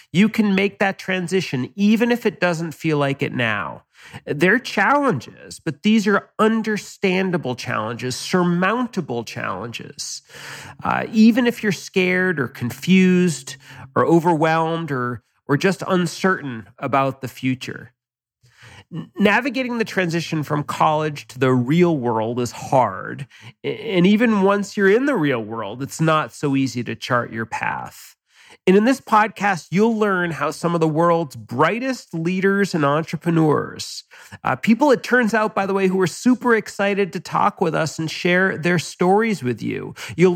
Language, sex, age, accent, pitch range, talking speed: English, male, 40-59, American, 135-200 Hz, 155 wpm